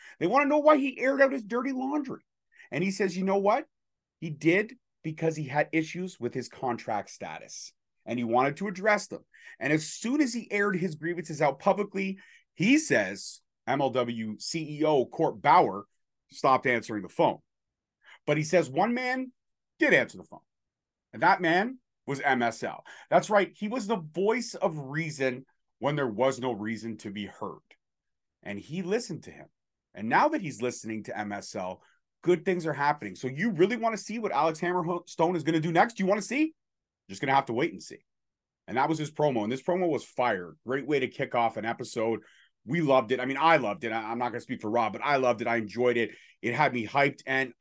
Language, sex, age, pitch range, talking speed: English, male, 30-49, 125-185 Hz, 215 wpm